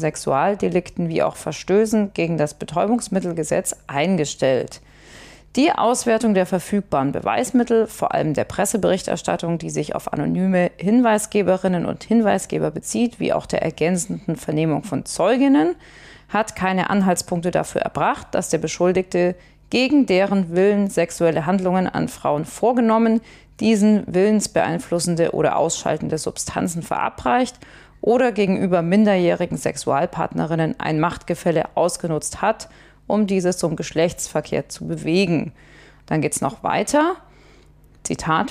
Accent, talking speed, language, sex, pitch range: German, 115 wpm, German, female, 170-215 Hz